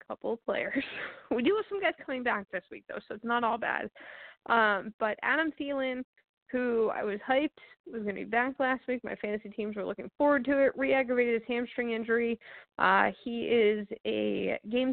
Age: 20-39